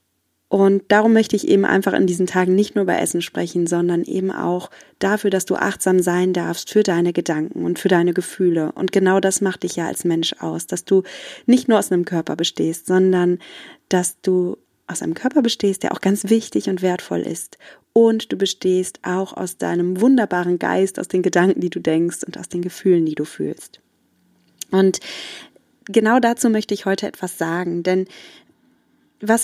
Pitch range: 185-240 Hz